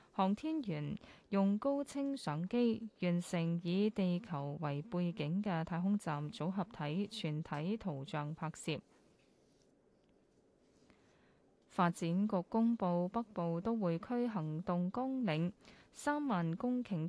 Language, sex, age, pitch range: Chinese, female, 10-29, 165-210 Hz